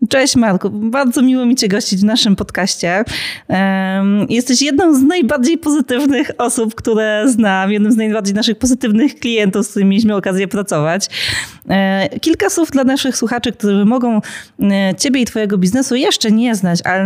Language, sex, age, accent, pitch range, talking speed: Polish, female, 30-49, native, 200-255 Hz, 155 wpm